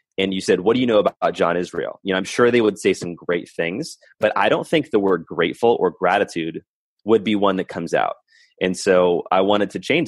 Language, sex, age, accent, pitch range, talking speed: English, male, 30-49, American, 90-110 Hz, 245 wpm